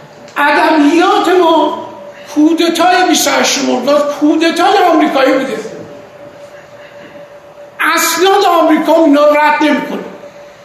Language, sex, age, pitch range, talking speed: Persian, male, 60-79, 280-335 Hz, 95 wpm